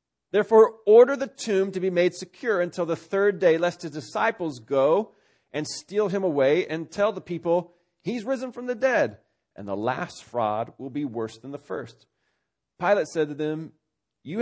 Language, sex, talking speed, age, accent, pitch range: English, male, 185 wpm, 40-59, American, 165-245 Hz